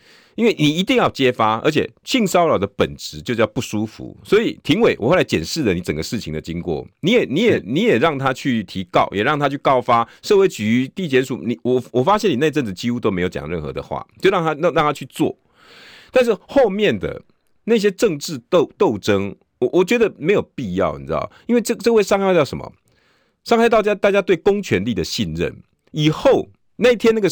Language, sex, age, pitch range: Chinese, male, 50-69, 110-185 Hz